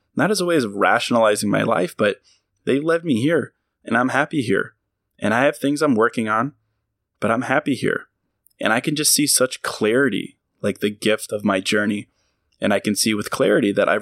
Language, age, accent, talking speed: English, 20-39, American, 210 wpm